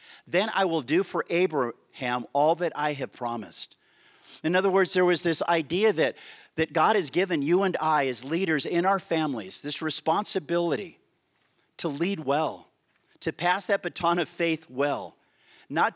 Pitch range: 140-175 Hz